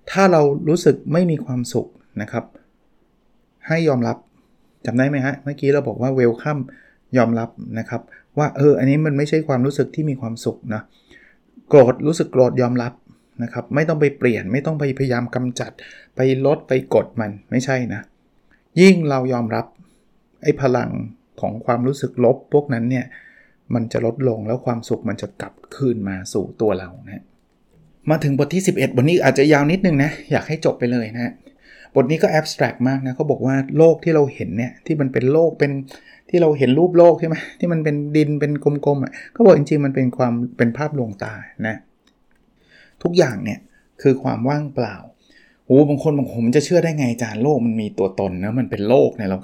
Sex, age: male, 20-39